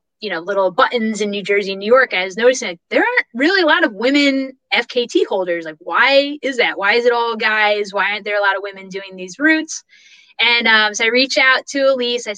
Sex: female